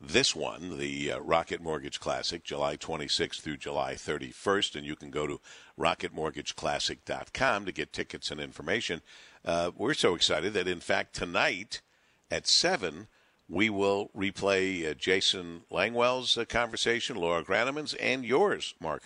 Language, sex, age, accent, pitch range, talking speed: English, male, 50-69, American, 80-100 Hz, 145 wpm